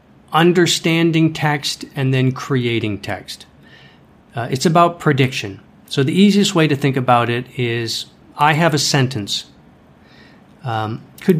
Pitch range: 120-155 Hz